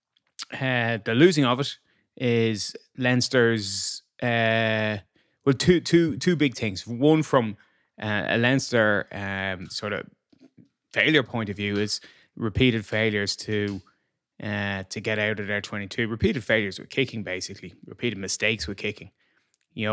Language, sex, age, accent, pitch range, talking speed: English, male, 20-39, Irish, 105-120 Hz, 140 wpm